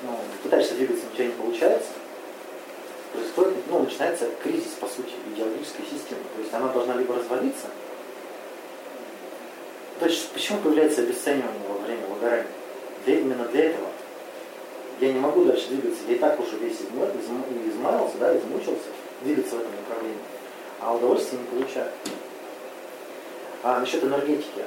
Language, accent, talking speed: Russian, native, 135 wpm